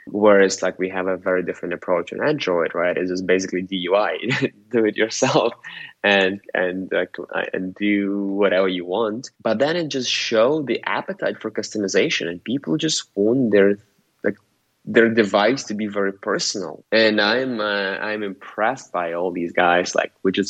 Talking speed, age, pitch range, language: 175 wpm, 20-39, 90-105 Hz, English